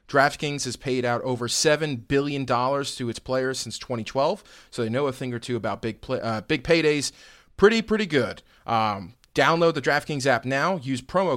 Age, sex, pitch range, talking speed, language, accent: 30-49, male, 115-140 Hz, 185 wpm, English, American